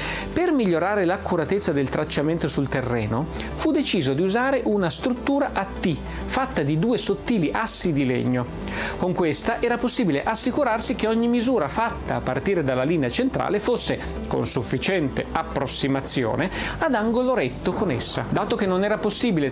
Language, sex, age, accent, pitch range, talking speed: Italian, male, 40-59, native, 145-220 Hz, 155 wpm